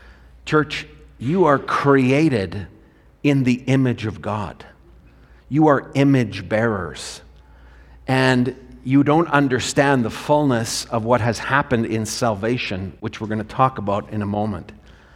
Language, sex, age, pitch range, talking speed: English, male, 50-69, 95-135 Hz, 135 wpm